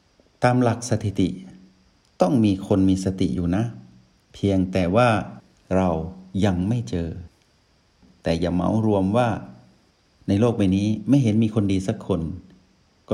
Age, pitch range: 60-79, 95-110 Hz